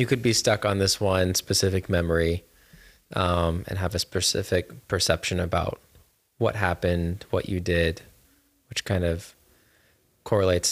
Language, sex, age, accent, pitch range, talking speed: English, male, 20-39, American, 90-100 Hz, 140 wpm